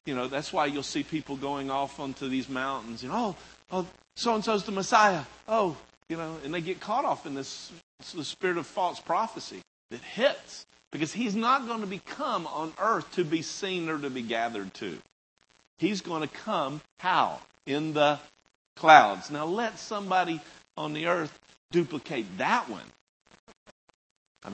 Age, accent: 50-69, American